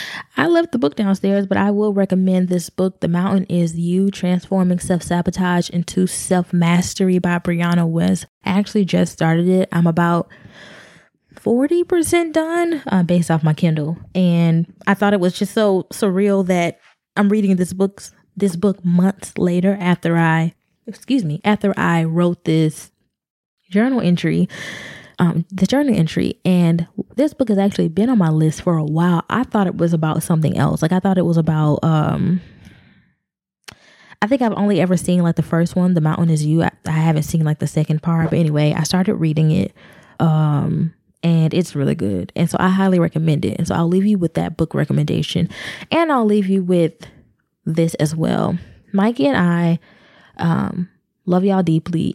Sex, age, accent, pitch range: female, 20-39, American, 165-195 Hz